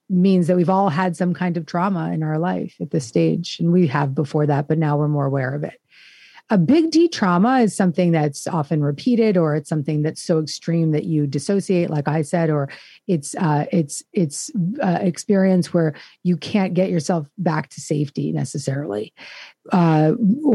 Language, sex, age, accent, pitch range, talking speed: English, female, 40-59, American, 150-185 Hz, 190 wpm